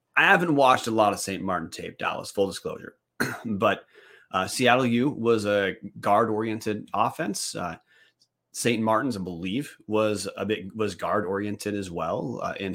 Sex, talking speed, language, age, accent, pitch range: male, 170 wpm, English, 30-49, American, 90-120 Hz